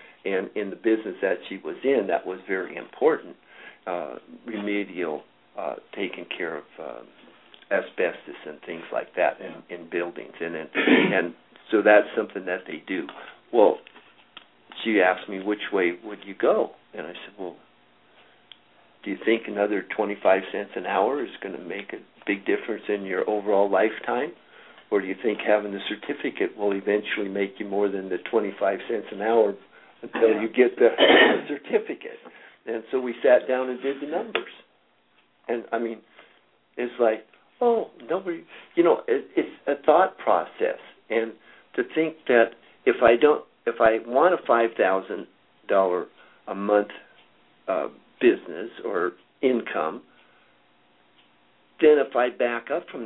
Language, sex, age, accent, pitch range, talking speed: English, male, 50-69, American, 95-125 Hz, 160 wpm